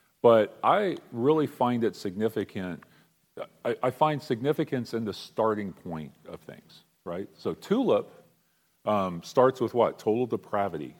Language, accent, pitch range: English, American, 95-125 Hz